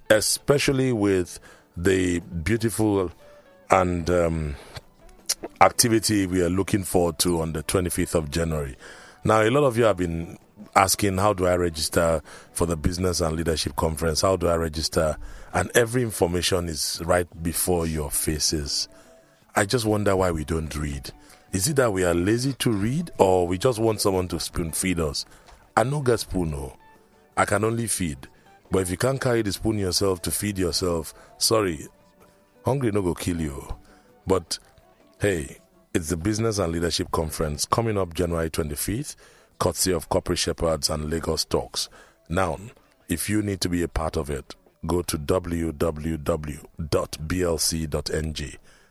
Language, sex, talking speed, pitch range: English, male, 155 wpm, 80-100 Hz